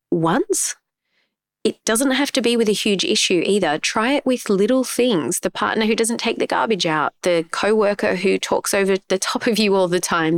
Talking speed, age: 210 wpm, 20-39